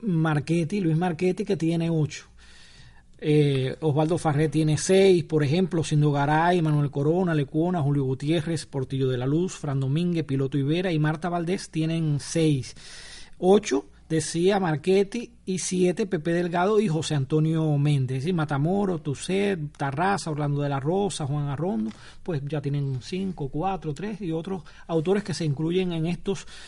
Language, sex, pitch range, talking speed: Spanish, male, 145-185 Hz, 150 wpm